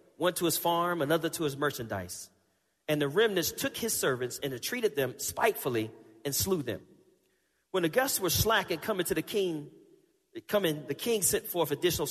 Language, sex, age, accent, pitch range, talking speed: English, male, 40-59, American, 125-170 Hz, 180 wpm